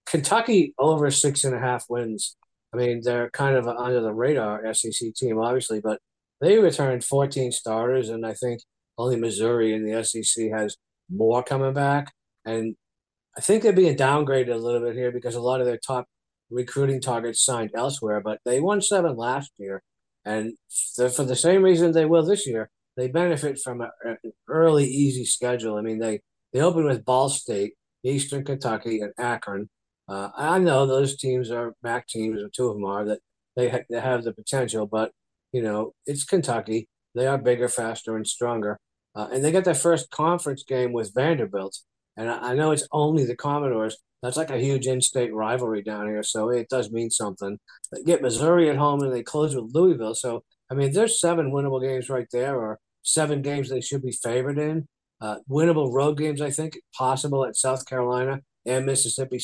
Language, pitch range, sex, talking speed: English, 115-140 Hz, male, 190 wpm